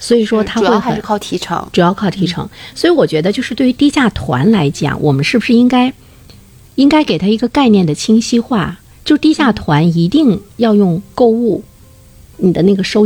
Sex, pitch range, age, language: female, 160-235 Hz, 50-69, Chinese